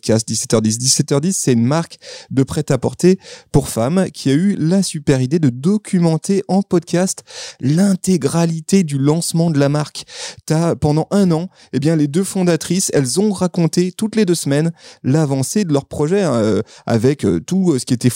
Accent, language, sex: French, French, male